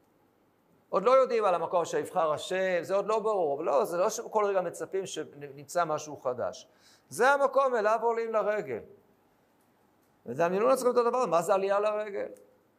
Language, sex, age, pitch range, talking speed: Hebrew, male, 50-69, 145-235 Hz, 165 wpm